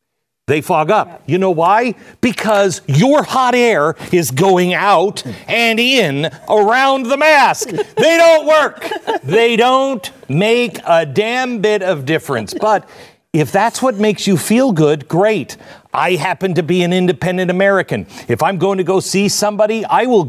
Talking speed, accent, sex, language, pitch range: 160 wpm, American, male, English, 160-225 Hz